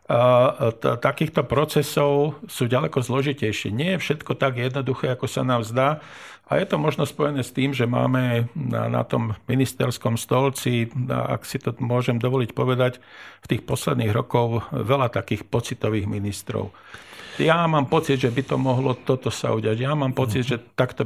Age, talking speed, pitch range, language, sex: 50-69, 175 wpm, 120-140 Hz, Slovak, male